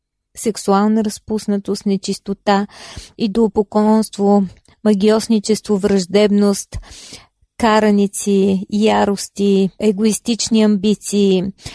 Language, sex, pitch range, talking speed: Bulgarian, female, 200-230 Hz, 50 wpm